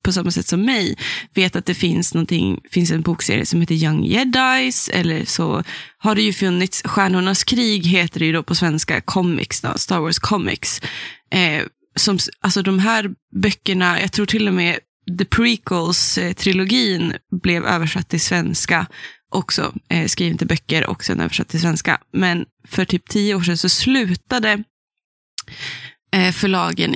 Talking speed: 155 wpm